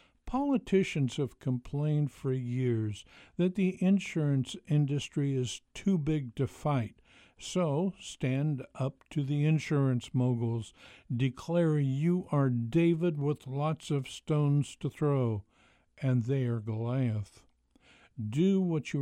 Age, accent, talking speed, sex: 60-79, American, 120 wpm, male